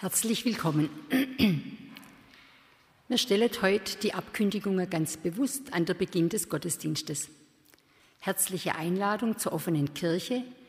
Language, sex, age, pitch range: German, female, 50-69, 155-215 Hz